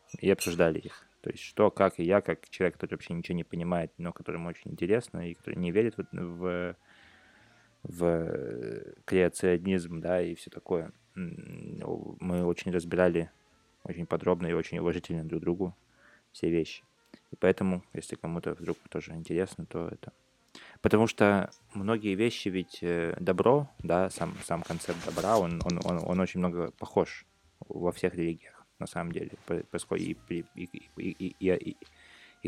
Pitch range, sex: 85-95 Hz, male